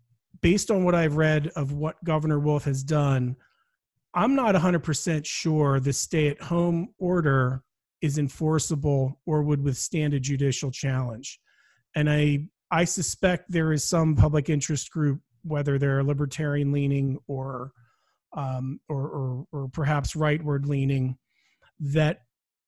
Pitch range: 135-160 Hz